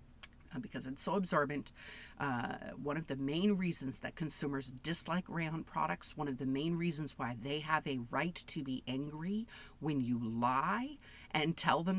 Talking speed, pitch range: 170 wpm, 135-165 Hz